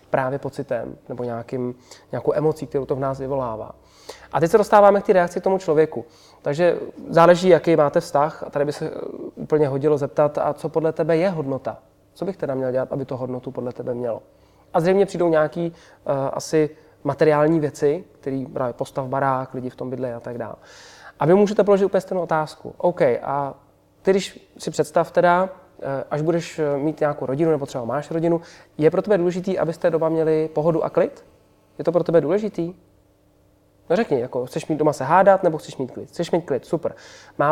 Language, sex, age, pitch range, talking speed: Czech, male, 20-39, 130-170 Hz, 195 wpm